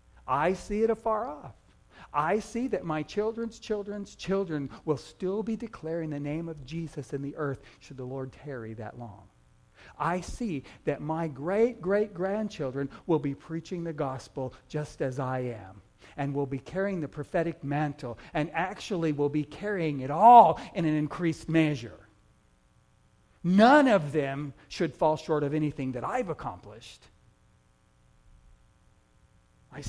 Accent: American